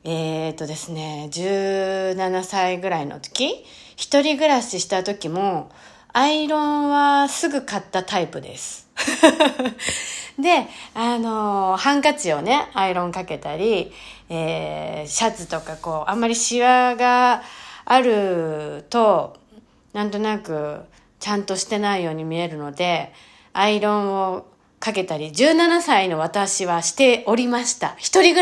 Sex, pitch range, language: female, 180-275 Hz, Japanese